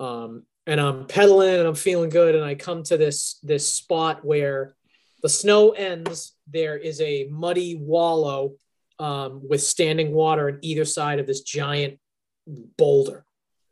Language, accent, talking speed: English, American, 155 wpm